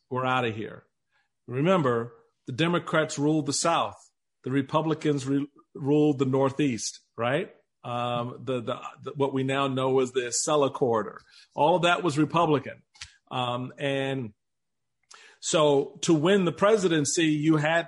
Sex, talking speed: male, 145 wpm